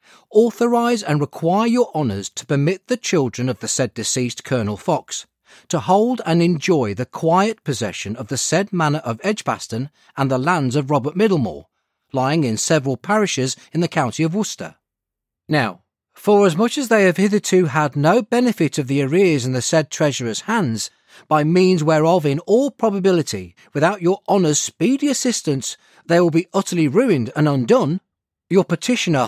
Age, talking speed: 40-59, 170 wpm